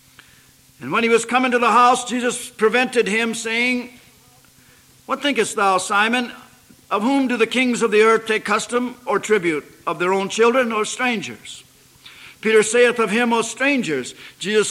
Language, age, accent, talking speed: English, 60-79, American, 165 wpm